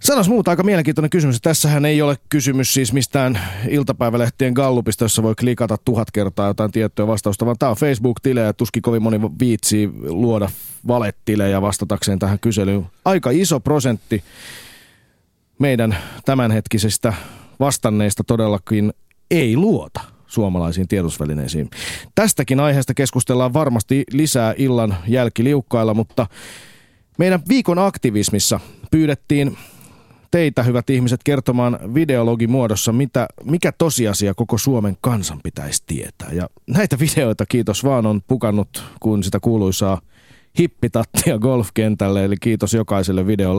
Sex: male